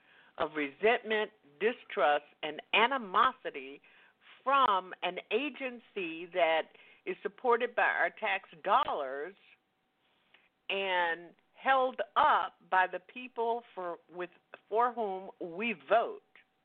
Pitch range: 175-245 Hz